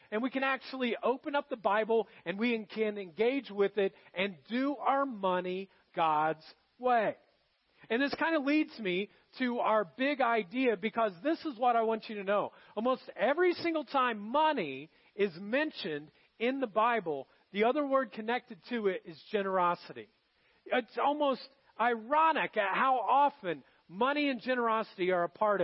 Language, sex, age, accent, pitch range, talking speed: English, male, 40-59, American, 200-270 Hz, 160 wpm